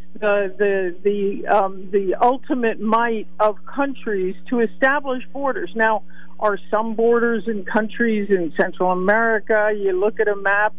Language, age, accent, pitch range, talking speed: English, 50-69, American, 200-240 Hz, 145 wpm